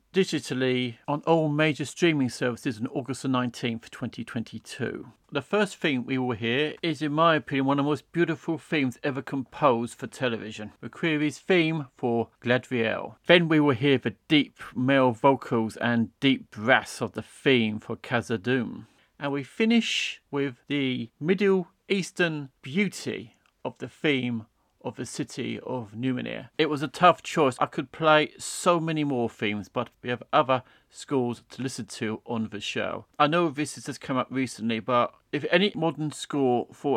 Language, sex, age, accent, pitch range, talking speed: English, male, 40-59, British, 120-150 Hz, 165 wpm